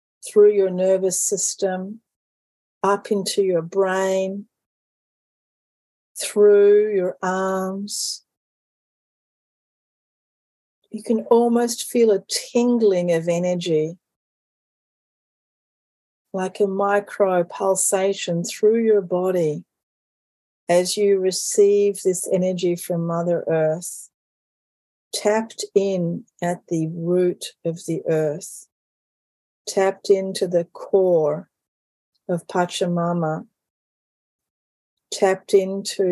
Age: 40-59